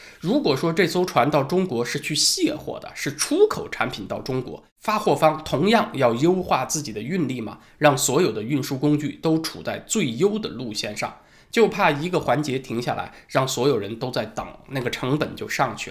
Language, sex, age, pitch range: Chinese, male, 20-39, 130-185 Hz